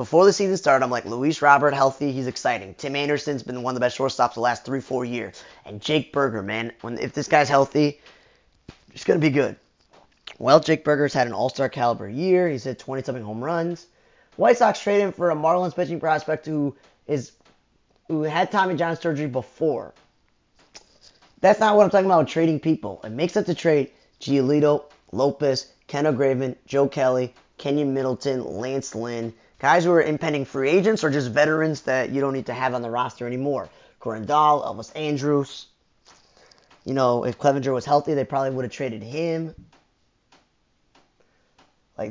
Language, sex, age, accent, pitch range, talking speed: English, male, 20-39, American, 130-155 Hz, 180 wpm